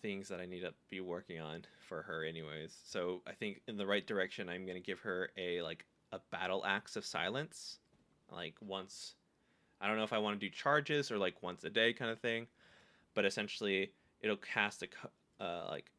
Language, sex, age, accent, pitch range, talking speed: English, male, 20-39, American, 95-130 Hz, 210 wpm